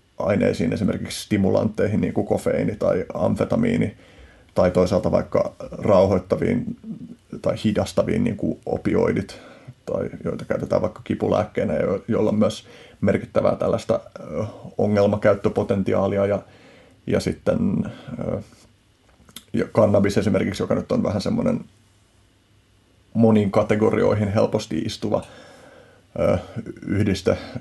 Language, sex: Finnish, male